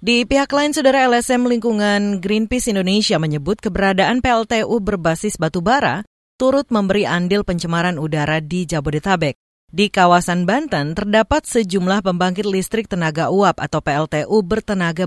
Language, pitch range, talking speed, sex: Indonesian, 170-230 Hz, 125 wpm, female